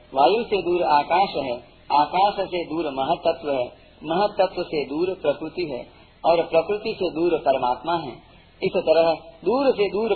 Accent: native